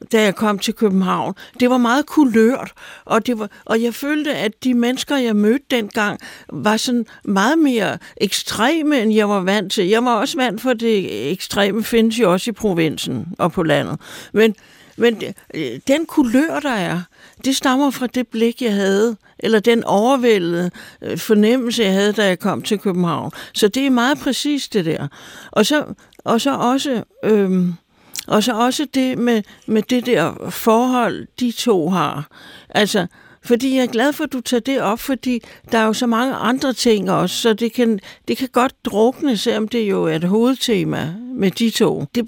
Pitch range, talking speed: 205-250 Hz, 185 wpm